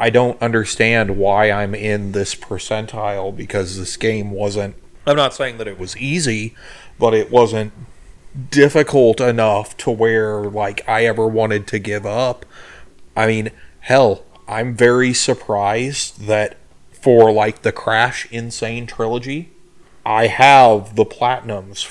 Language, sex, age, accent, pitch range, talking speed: English, male, 30-49, American, 105-120 Hz, 135 wpm